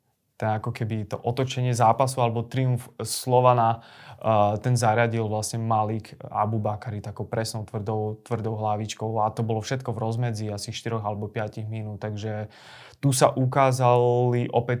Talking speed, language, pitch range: 140 wpm, Slovak, 115-130 Hz